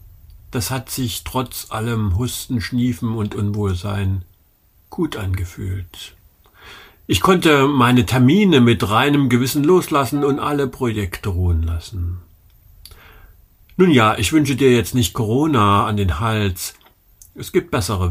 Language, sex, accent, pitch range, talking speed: German, male, German, 90-125 Hz, 125 wpm